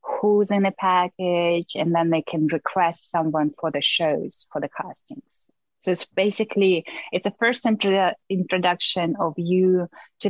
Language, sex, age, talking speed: English, female, 20-39, 155 wpm